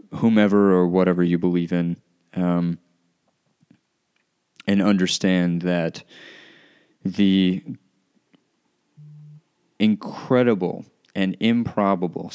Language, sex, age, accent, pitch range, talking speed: English, male, 30-49, American, 90-105 Hz, 70 wpm